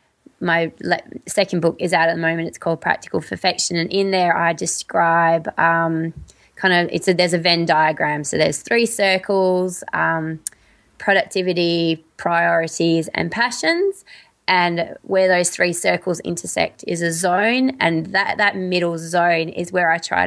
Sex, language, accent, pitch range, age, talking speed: female, English, Australian, 170-210 Hz, 20-39, 165 wpm